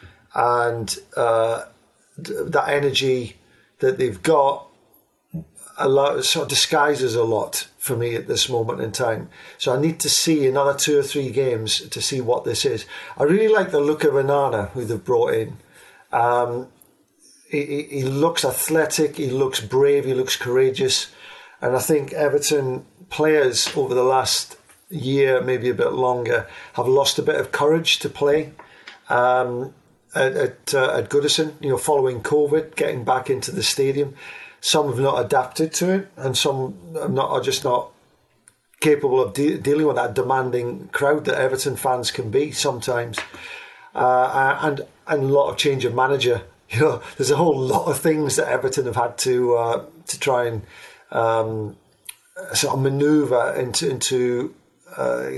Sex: male